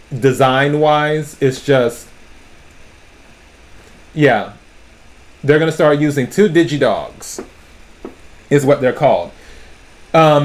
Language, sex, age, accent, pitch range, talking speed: English, male, 30-49, American, 100-150 Hz, 105 wpm